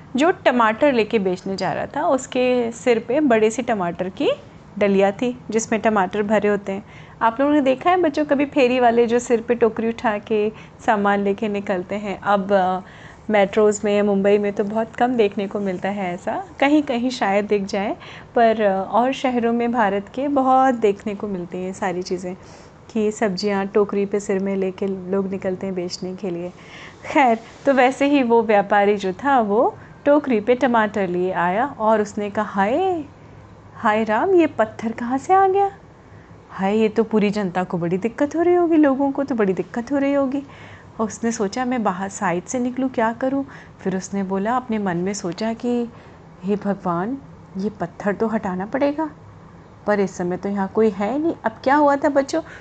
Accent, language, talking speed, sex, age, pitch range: native, Hindi, 195 wpm, female, 30-49, 200-260 Hz